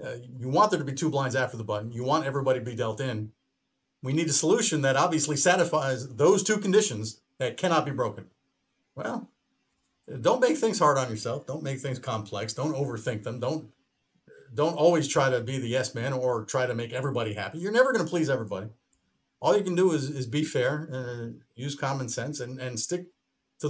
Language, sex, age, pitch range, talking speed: English, male, 40-59, 120-155 Hz, 210 wpm